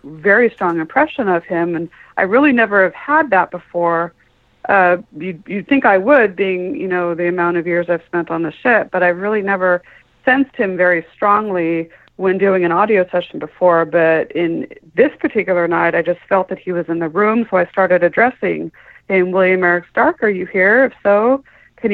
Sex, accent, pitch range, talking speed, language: female, American, 175-205 Hz, 200 wpm, English